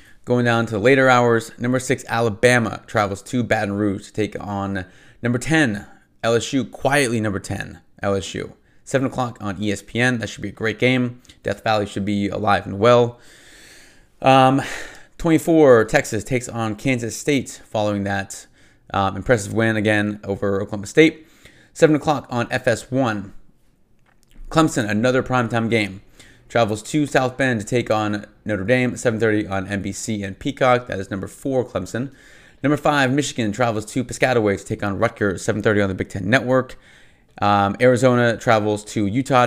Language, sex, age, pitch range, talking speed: English, male, 30-49, 100-125 Hz, 155 wpm